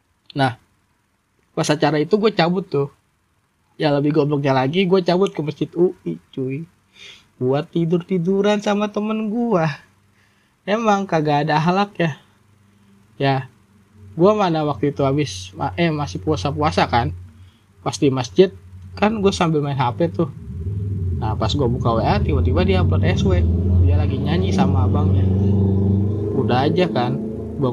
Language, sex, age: Indonesian, male, 20-39